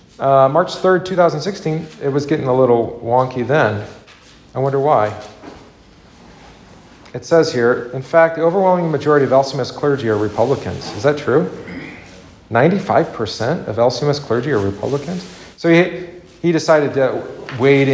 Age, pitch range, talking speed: 40-59, 115-150 Hz, 140 wpm